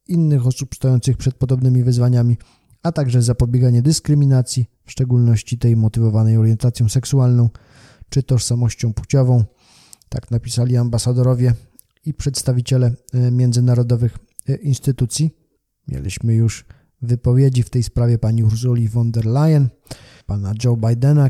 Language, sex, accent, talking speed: Polish, male, native, 115 wpm